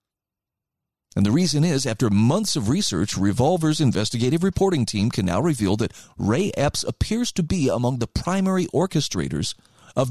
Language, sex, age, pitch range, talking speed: English, male, 40-59, 110-160 Hz, 155 wpm